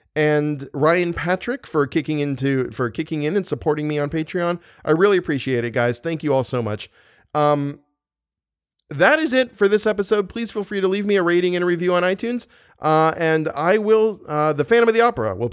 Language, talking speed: English, 215 wpm